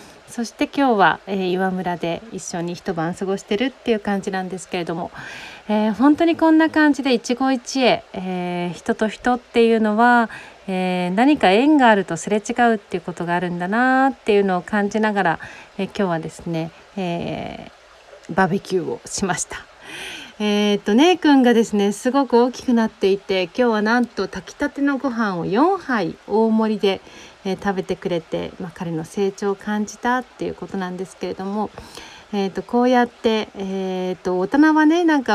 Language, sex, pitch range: Japanese, female, 185-245 Hz